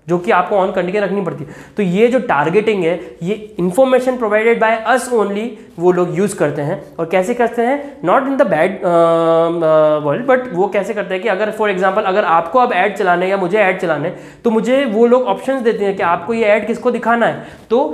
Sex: male